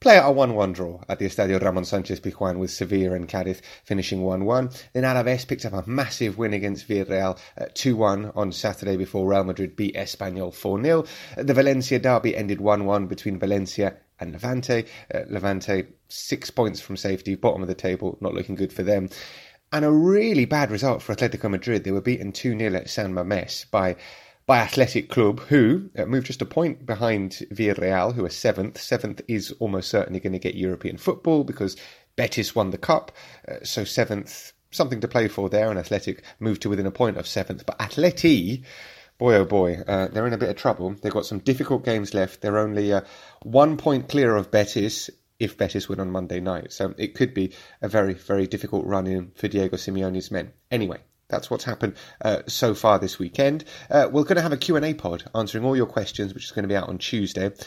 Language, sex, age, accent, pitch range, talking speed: English, male, 30-49, British, 95-125 Hz, 200 wpm